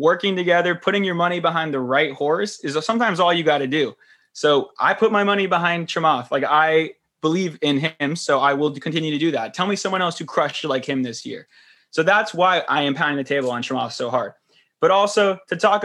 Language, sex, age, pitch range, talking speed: English, male, 20-39, 150-185 Hz, 230 wpm